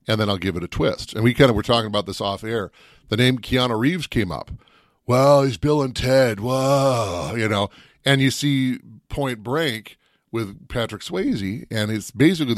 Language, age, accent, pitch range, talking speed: English, 40-59, American, 100-135 Hz, 200 wpm